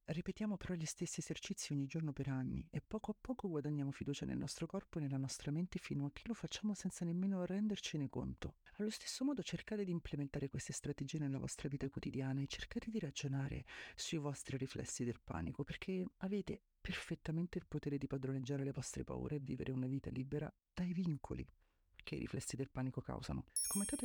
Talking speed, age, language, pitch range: 190 wpm, 40-59, Italian, 135-165 Hz